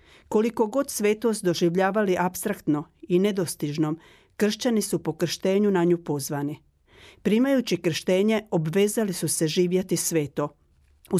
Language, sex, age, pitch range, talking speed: Croatian, female, 40-59, 170-215 Hz, 120 wpm